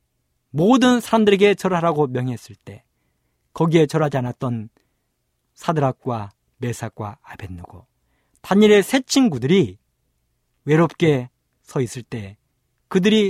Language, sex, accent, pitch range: Korean, male, native, 115-190 Hz